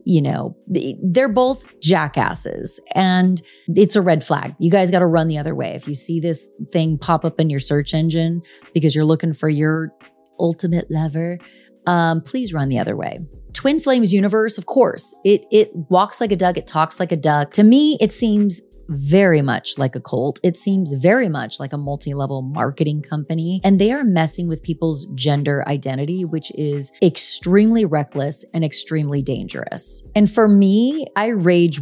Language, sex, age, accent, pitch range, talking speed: English, female, 30-49, American, 150-195 Hz, 180 wpm